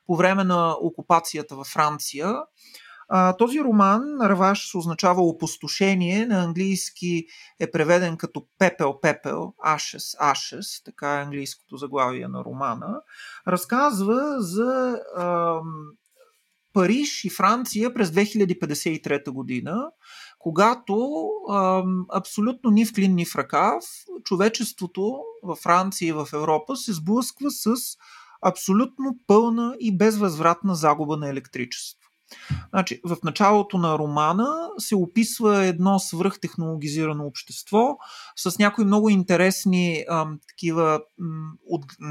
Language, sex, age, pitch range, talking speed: Bulgarian, male, 30-49, 155-210 Hz, 105 wpm